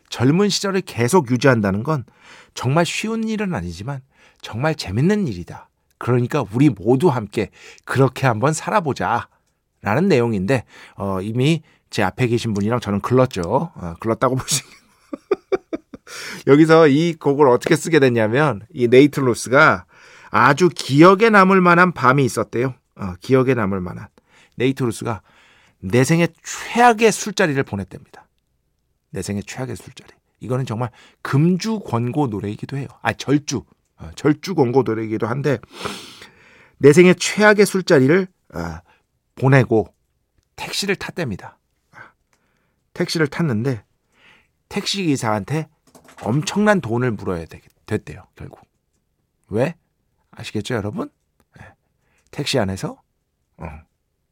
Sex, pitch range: male, 110-165 Hz